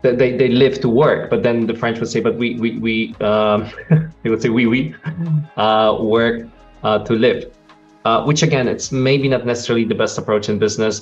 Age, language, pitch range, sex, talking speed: 20-39, English, 105-140 Hz, male, 205 wpm